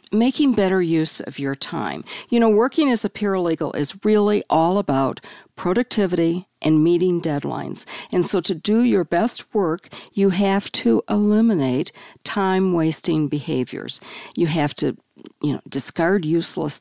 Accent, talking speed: American, 145 wpm